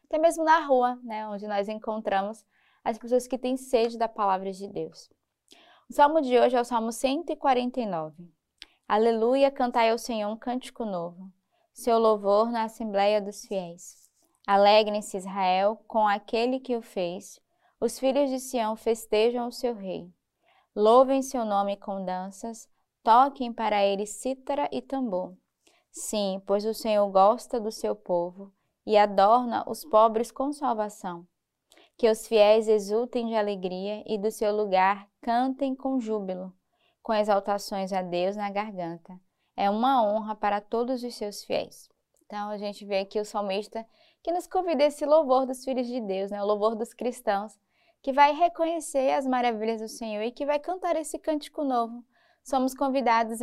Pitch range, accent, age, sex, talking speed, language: 205-260 Hz, Brazilian, 20-39, female, 160 wpm, Portuguese